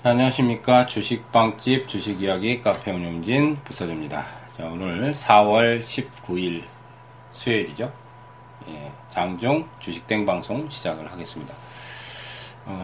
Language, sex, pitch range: Korean, male, 90-125 Hz